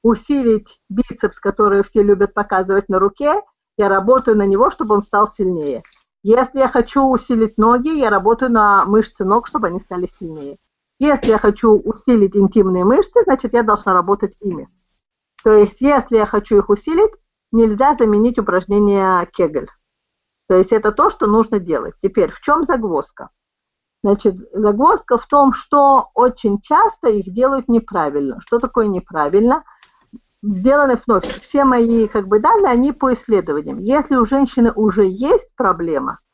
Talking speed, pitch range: 150 wpm, 200-255 Hz